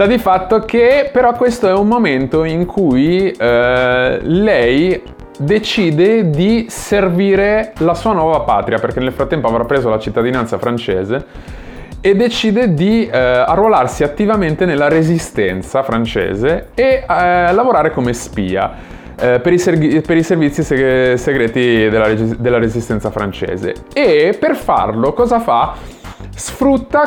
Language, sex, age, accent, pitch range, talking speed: Italian, male, 30-49, native, 120-200 Hz, 125 wpm